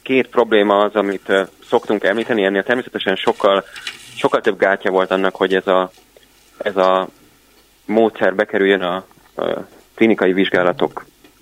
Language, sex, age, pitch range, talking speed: Hungarian, male, 30-49, 90-105 Hz, 125 wpm